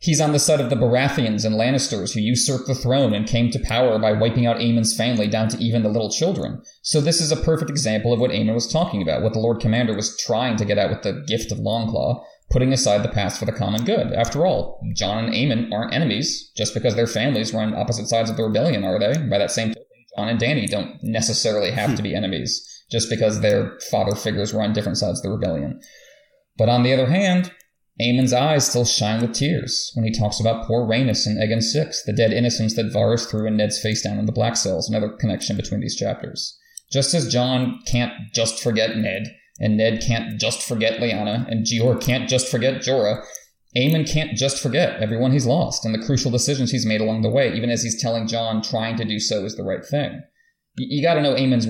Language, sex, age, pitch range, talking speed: English, male, 30-49, 110-130 Hz, 230 wpm